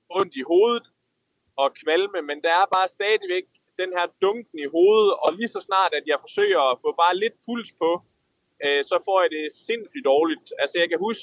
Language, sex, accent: Danish, male, native